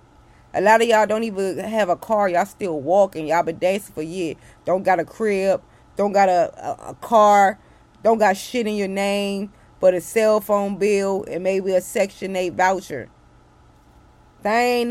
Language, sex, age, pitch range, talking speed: English, female, 20-39, 190-230 Hz, 185 wpm